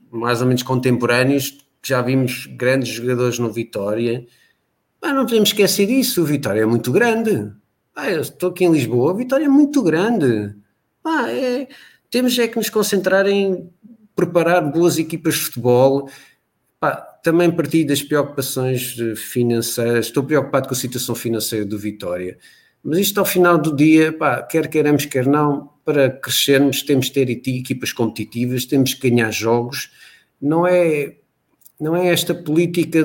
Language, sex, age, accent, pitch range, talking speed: Portuguese, male, 50-69, Portuguese, 130-175 Hz, 155 wpm